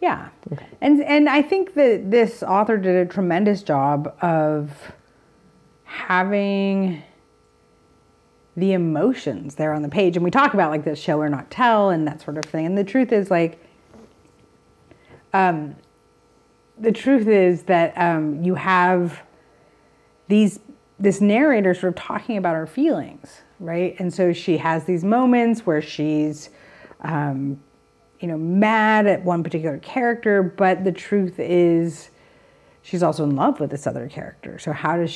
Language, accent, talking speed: English, American, 150 wpm